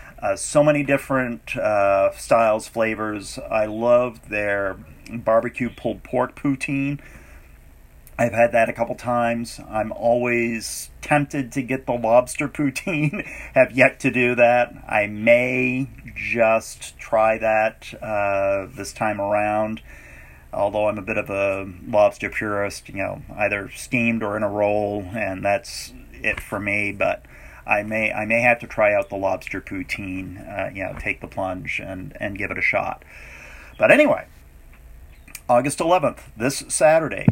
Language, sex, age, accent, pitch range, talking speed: English, male, 40-59, American, 100-125 Hz, 150 wpm